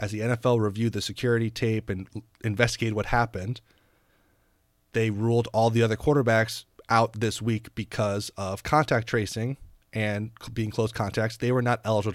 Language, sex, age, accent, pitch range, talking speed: English, male, 30-49, American, 105-130 Hz, 160 wpm